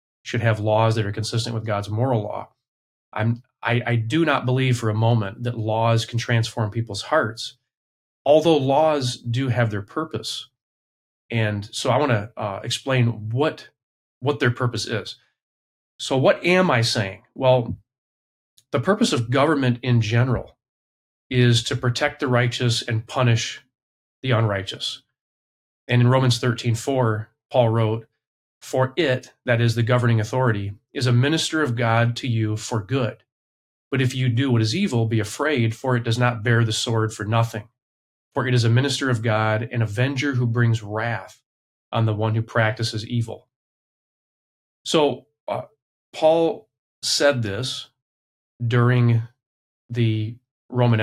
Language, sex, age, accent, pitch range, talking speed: English, male, 30-49, American, 110-130 Hz, 155 wpm